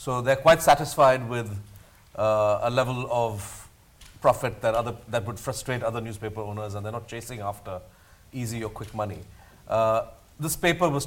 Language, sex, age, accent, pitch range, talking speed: English, male, 40-59, Indian, 105-125 Hz, 170 wpm